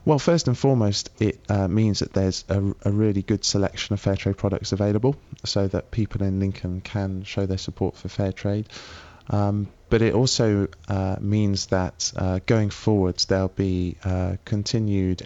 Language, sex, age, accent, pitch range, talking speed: English, male, 20-39, British, 90-105 Hz, 175 wpm